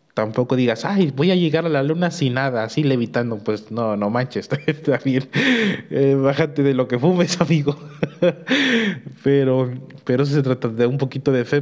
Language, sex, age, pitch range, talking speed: Spanish, male, 20-39, 125-150 Hz, 175 wpm